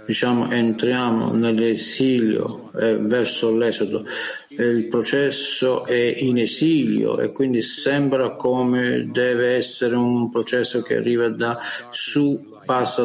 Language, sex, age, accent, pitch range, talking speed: Italian, male, 50-69, native, 115-135 Hz, 110 wpm